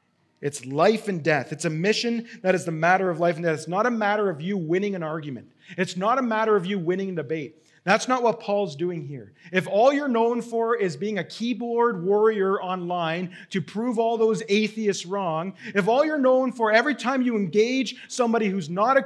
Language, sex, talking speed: English, male, 215 wpm